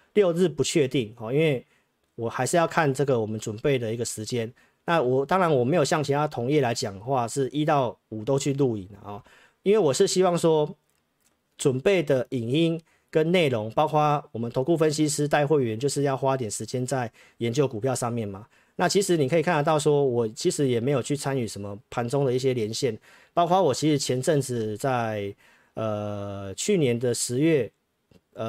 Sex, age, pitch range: male, 40-59, 115-150 Hz